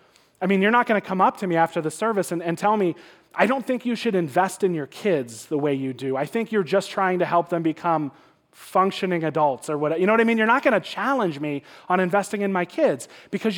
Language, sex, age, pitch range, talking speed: English, male, 30-49, 145-200 Hz, 265 wpm